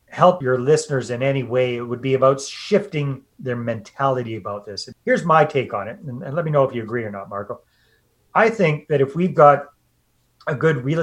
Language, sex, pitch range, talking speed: English, male, 125-155 Hz, 210 wpm